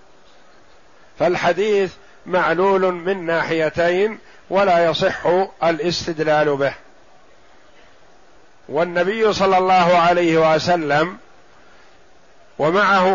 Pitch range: 165-200 Hz